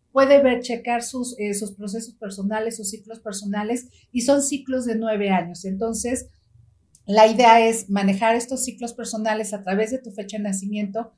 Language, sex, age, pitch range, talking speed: Spanish, female, 40-59, 200-230 Hz, 170 wpm